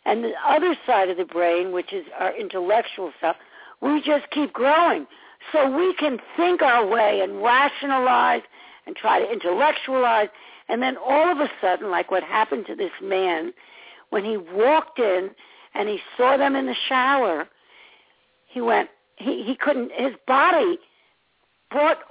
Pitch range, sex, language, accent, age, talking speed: 245-335 Hz, female, English, American, 60-79, 160 wpm